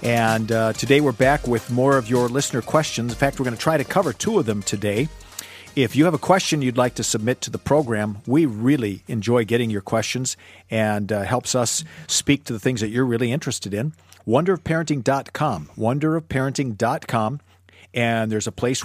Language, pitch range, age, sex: English, 110-140 Hz, 50-69, male